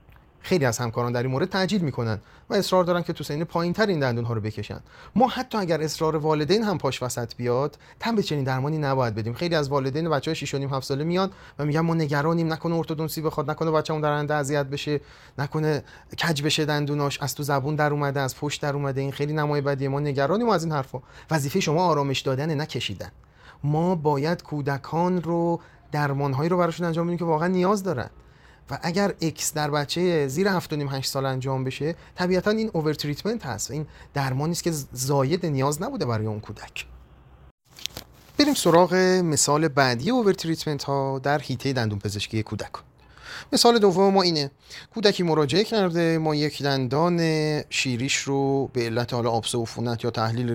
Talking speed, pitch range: 180 wpm, 135-170 Hz